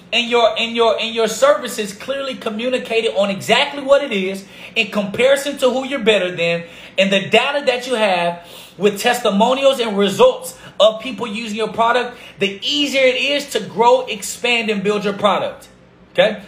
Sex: male